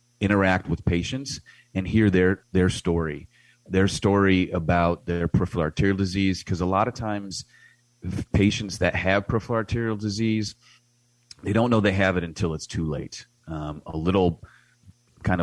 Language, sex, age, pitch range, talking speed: English, male, 30-49, 85-100 Hz, 155 wpm